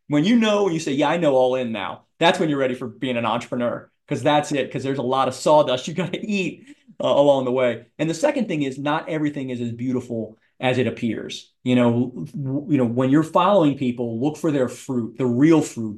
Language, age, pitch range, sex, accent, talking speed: English, 30-49, 125-155 Hz, male, American, 245 wpm